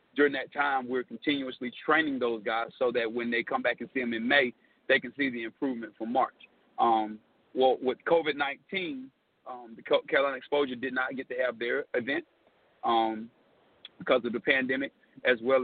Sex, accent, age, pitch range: male, American, 40-59, 120-140 Hz